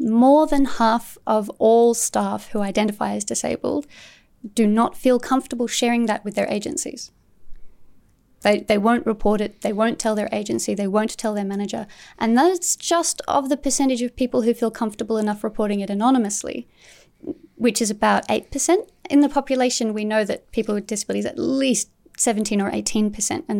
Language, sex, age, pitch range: English, female, 30-49, 210-255 Hz